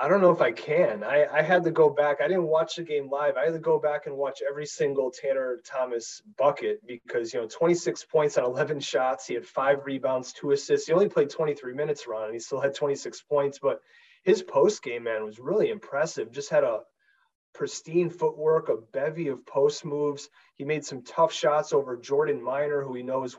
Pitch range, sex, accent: 130-180 Hz, male, American